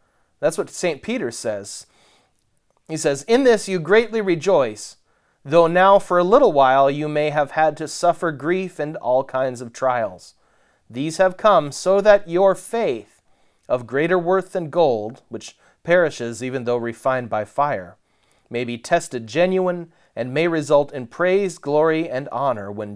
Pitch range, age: 120-175 Hz, 30-49